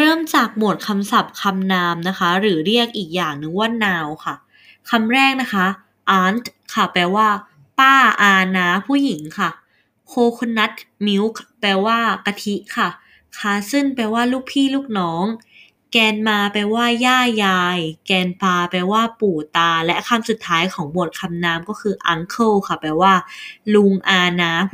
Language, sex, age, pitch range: Thai, female, 20-39, 185-230 Hz